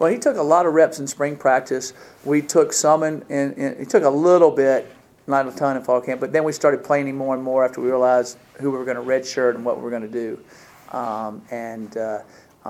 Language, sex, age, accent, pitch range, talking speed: English, male, 50-69, American, 125-140 Hz, 245 wpm